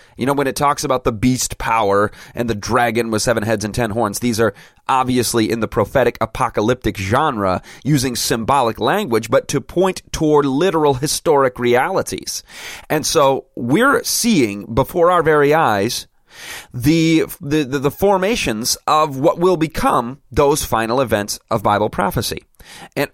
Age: 30-49